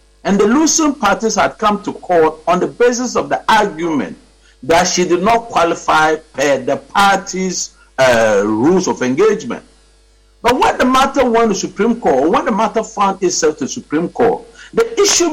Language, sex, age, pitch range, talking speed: English, male, 60-79, 180-255 Hz, 180 wpm